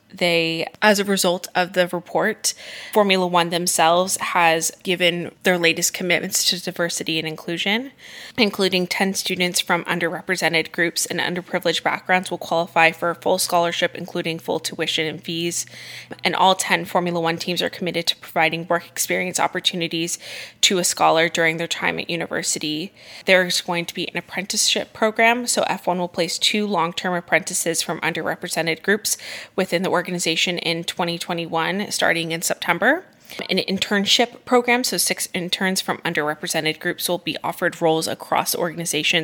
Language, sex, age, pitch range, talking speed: English, female, 20-39, 165-190 Hz, 160 wpm